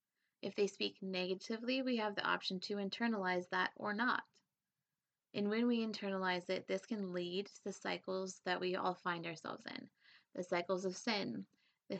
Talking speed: 175 wpm